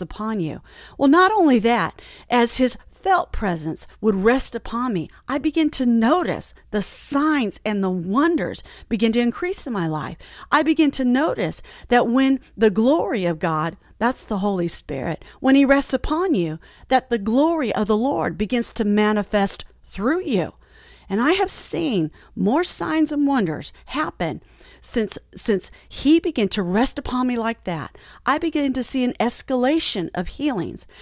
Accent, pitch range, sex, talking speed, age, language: American, 200-275 Hz, female, 165 wpm, 40-59, English